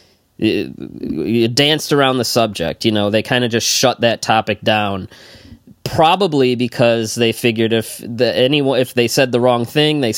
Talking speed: 155 wpm